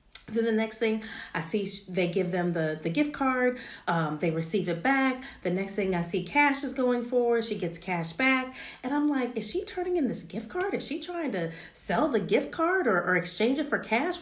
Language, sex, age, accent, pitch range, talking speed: English, female, 30-49, American, 175-235 Hz, 230 wpm